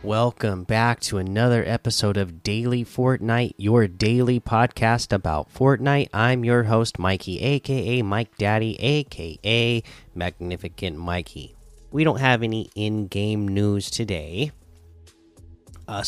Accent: American